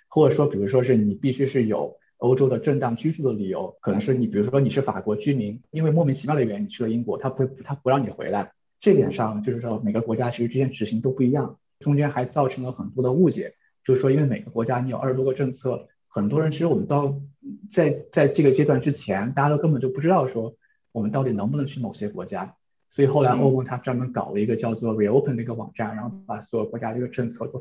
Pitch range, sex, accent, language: 115-145 Hz, male, native, Chinese